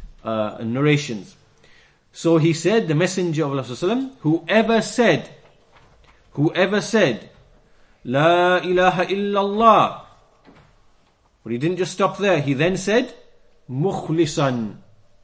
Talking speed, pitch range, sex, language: 100 wpm, 135-185 Hz, male, English